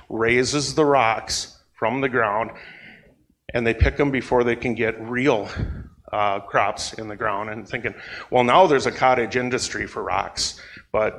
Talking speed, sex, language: 165 wpm, male, English